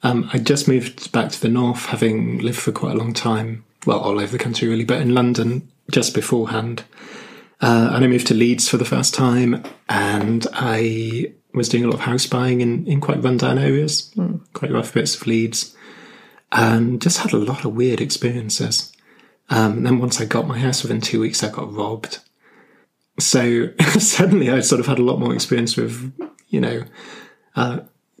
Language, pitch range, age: English, 115-140 Hz, 20-39